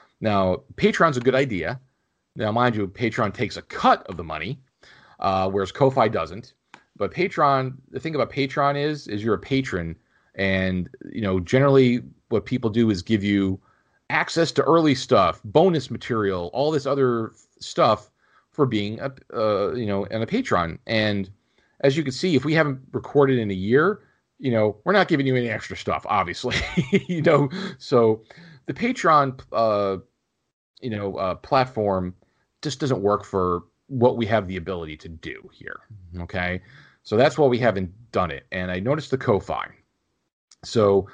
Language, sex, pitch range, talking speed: English, male, 100-135 Hz, 170 wpm